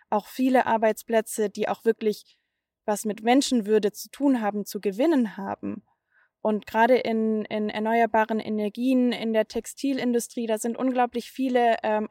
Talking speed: 145 wpm